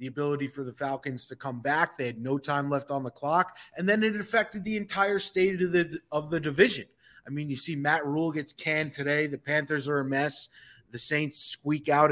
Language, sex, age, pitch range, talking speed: English, male, 30-49, 140-200 Hz, 230 wpm